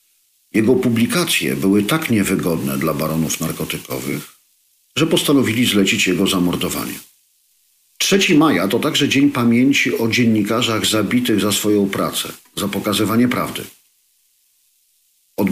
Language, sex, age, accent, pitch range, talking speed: Polish, male, 50-69, native, 95-115 Hz, 110 wpm